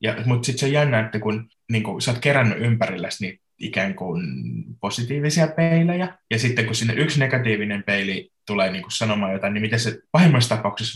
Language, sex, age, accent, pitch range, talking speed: Finnish, male, 20-39, native, 110-145 Hz, 175 wpm